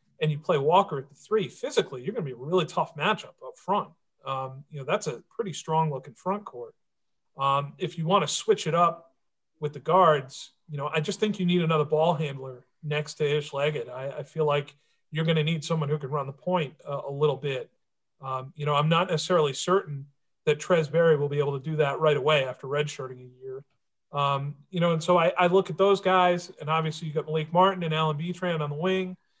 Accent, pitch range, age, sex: American, 150-180 Hz, 40-59, male